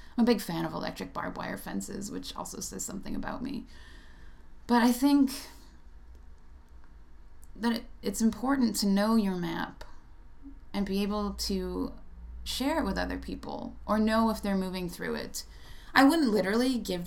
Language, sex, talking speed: English, female, 160 wpm